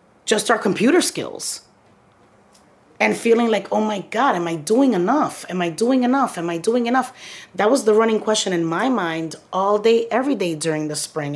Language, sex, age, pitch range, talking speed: English, female, 30-49, 165-225 Hz, 195 wpm